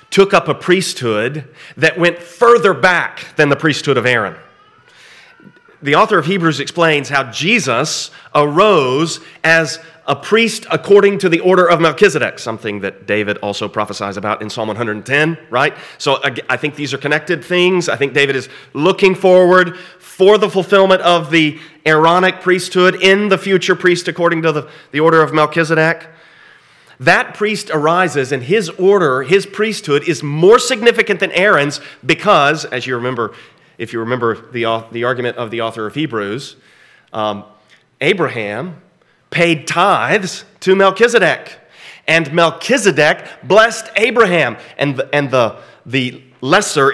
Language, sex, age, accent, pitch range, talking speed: English, male, 30-49, American, 135-185 Hz, 145 wpm